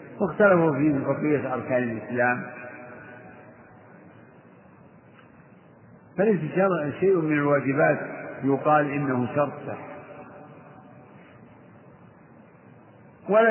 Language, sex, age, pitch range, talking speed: Arabic, male, 60-79, 135-170 Hz, 65 wpm